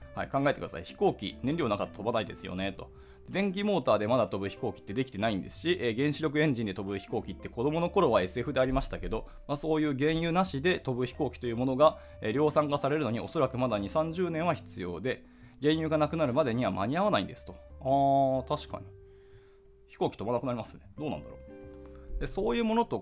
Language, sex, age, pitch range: Japanese, male, 20-39, 100-155 Hz